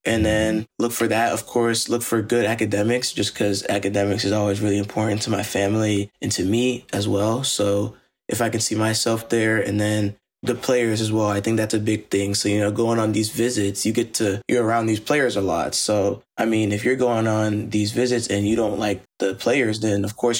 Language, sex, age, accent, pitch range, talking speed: English, male, 20-39, American, 100-115 Hz, 230 wpm